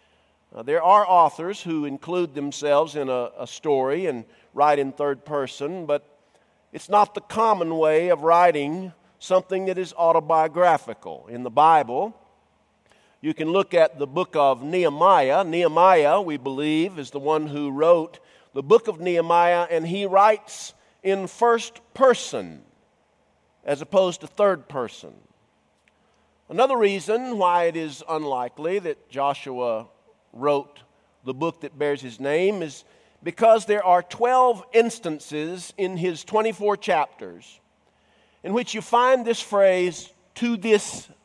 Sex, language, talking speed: male, English, 140 wpm